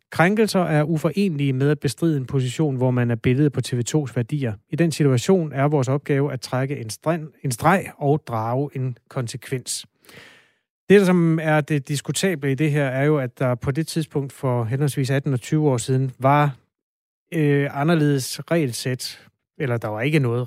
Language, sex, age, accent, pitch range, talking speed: Danish, male, 30-49, native, 125-150 Hz, 180 wpm